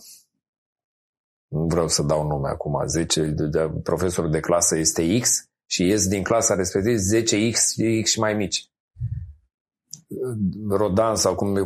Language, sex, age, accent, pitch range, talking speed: Romanian, male, 30-49, native, 80-105 Hz, 145 wpm